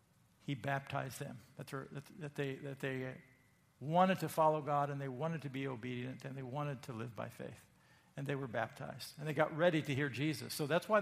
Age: 50-69